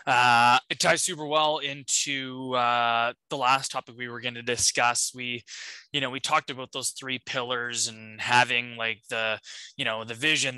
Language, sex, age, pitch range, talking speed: English, male, 20-39, 125-145 Hz, 180 wpm